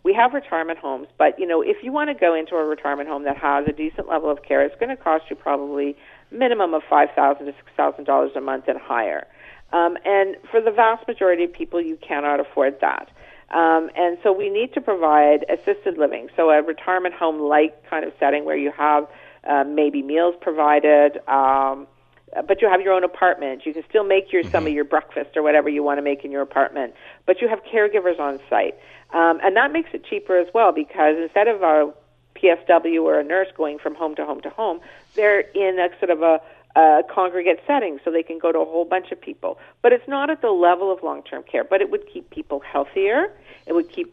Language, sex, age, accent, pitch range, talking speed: English, female, 50-69, American, 150-205 Hz, 225 wpm